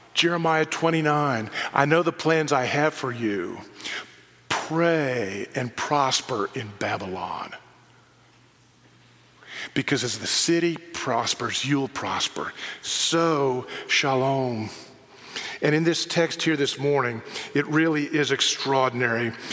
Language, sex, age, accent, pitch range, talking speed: English, male, 50-69, American, 130-160 Hz, 110 wpm